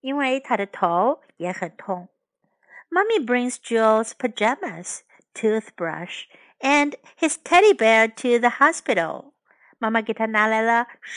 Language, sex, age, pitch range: Chinese, female, 50-69, 205-290 Hz